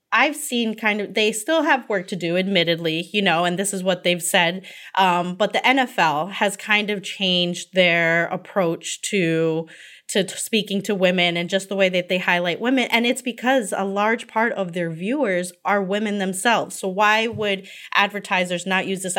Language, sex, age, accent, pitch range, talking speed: English, female, 20-39, American, 175-210 Hz, 190 wpm